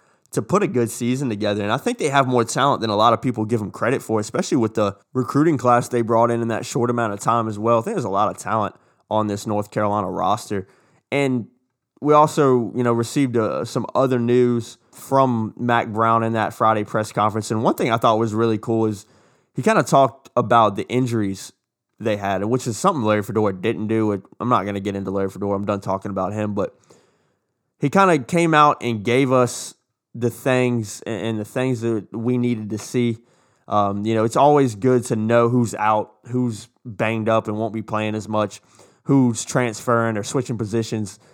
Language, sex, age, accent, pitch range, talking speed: English, male, 20-39, American, 110-125 Hz, 215 wpm